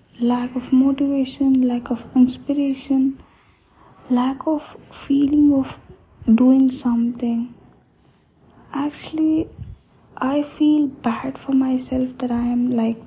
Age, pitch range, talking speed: 20-39, 240-270 Hz, 100 wpm